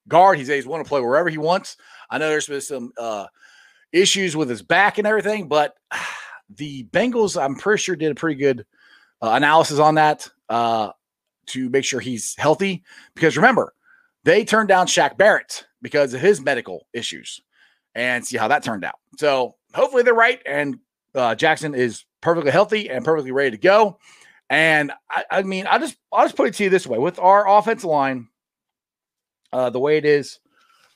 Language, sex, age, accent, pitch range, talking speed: English, male, 40-59, American, 135-210 Hz, 190 wpm